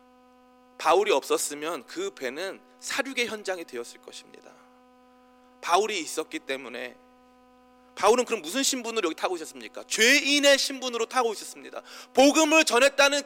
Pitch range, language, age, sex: 225-270 Hz, Korean, 30-49, male